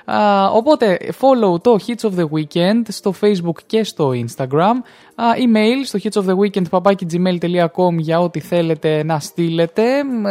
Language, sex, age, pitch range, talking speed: Greek, male, 20-39, 160-225 Hz, 135 wpm